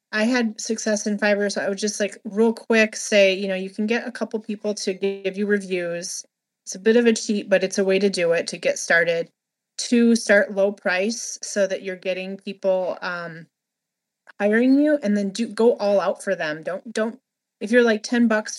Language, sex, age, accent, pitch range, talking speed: English, female, 30-49, American, 185-225 Hz, 220 wpm